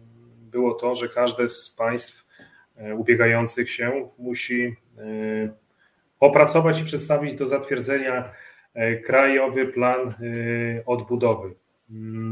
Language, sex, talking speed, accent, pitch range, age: Polish, male, 85 wpm, native, 110-130 Hz, 30-49